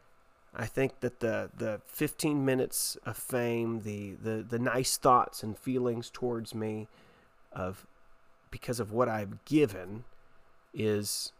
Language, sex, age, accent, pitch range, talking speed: English, male, 30-49, American, 115-145 Hz, 130 wpm